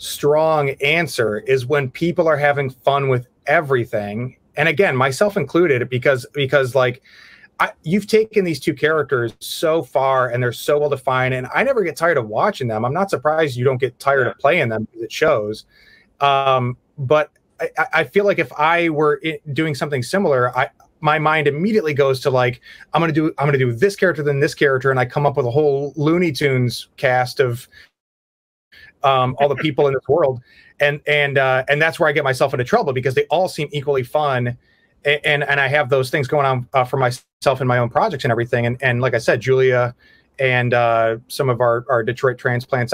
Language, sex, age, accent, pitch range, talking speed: English, male, 30-49, American, 125-150 Hz, 205 wpm